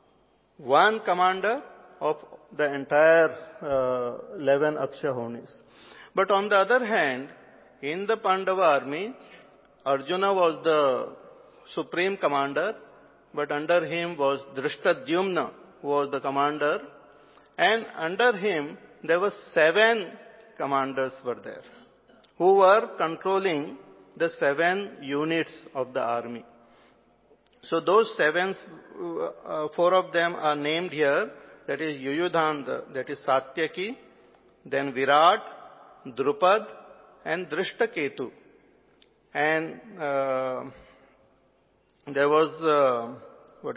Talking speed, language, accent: 105 wpm, English, Indian